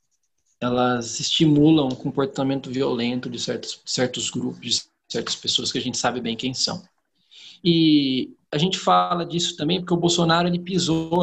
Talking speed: 160 wpm